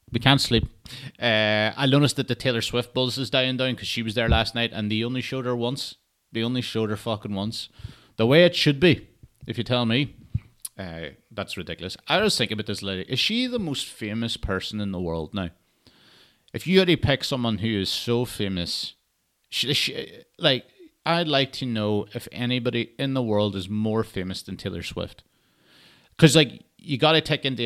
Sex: male